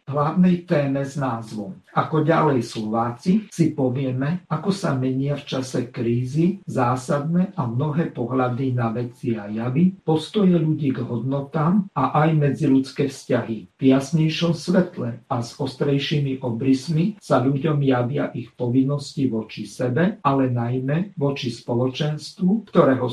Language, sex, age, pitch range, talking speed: Slovak, male, 50-69, 125-160 Hz, 130 wpm